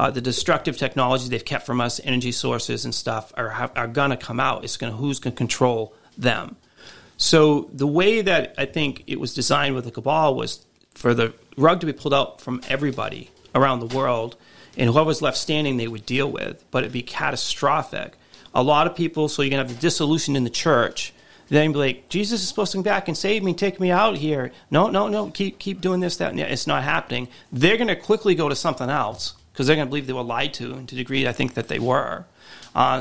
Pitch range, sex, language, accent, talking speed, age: 125-155 Hz, male, English, American, 240 wpm, 40-59